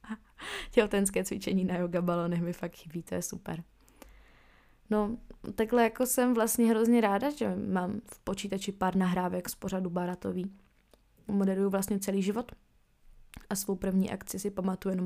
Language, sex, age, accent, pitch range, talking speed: Czech, female, 20-39, native, 185-215 Hz, 150 wpm